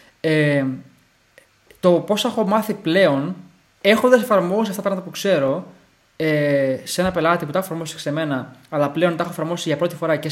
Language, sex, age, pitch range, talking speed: Greek, male, 20-39, 155-185 Hz, 190 wpm